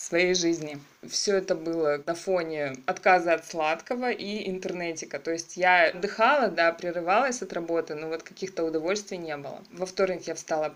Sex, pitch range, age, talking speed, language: female, 165-195 Hz, 20-39, 165 wpm, Russian